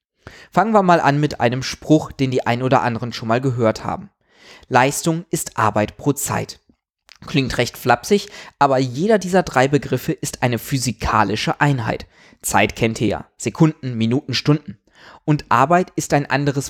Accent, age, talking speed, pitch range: German, 20-39, 160 wpm, 120-155 Hz